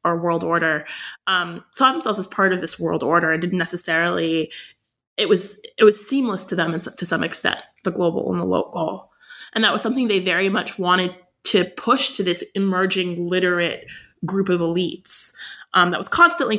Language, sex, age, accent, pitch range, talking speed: English, female, 20-39, American, 170-210 Hz, 190 wpm